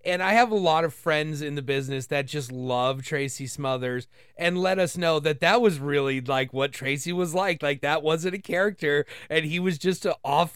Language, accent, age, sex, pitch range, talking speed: English, American, 30-49, male, 140-185 Hz, 220 wpm